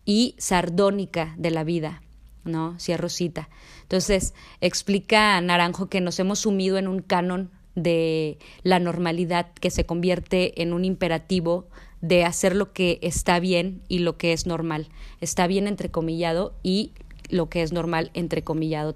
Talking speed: 150 wpm